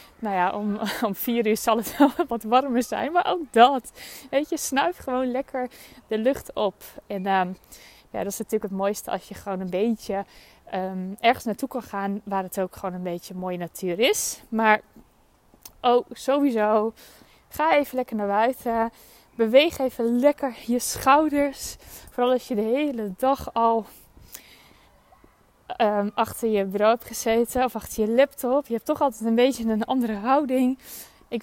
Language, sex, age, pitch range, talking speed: Dutch, female, 20-39, 210-255 Hz, 170 wpm